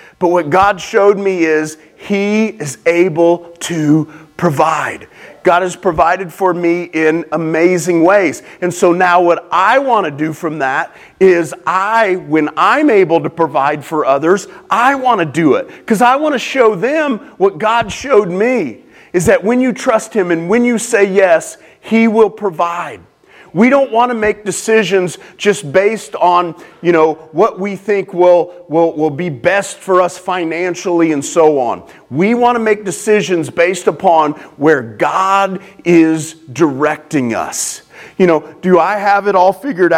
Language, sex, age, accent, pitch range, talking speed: English, male, 40-59, American, 160-200 Hz, 170 wpm